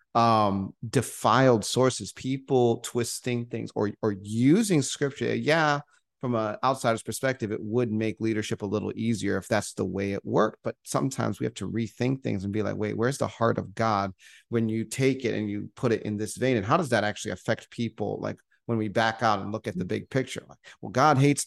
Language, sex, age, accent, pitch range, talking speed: English, male, 30-49, American, 110-135 Hz, 215 wpm